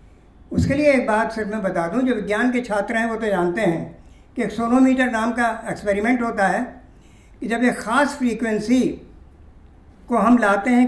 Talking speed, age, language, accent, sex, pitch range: 190 wpm, 50-69, Hindi, native, female, 210-260 Hz